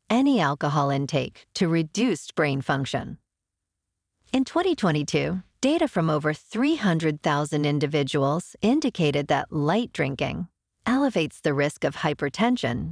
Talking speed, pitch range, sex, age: 105 wpm, 140-220 Hz, female, 40-59